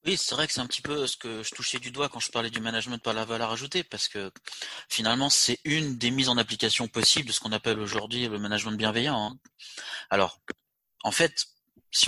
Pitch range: 105-130 Hz